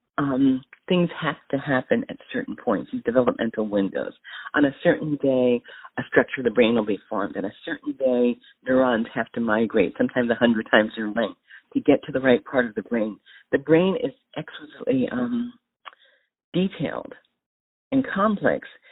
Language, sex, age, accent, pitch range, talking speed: English, female, 40-59, American, 130-180 Hz, 170 wpm